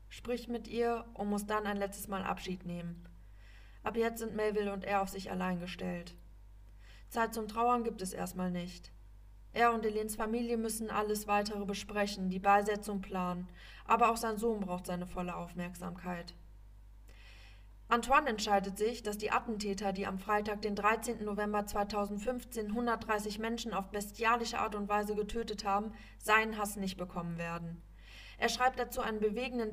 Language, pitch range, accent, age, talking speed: English, 180-225 Hz, German, 20-39, 160 wpm